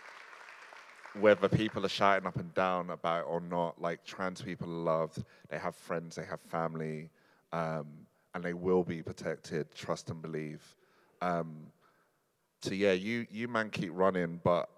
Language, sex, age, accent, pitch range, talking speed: English, male, 30-49, British, 80-90 Hz, 160 wpm